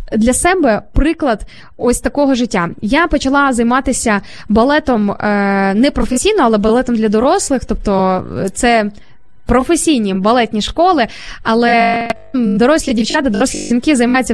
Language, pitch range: Ukrainian, 220-290 Hz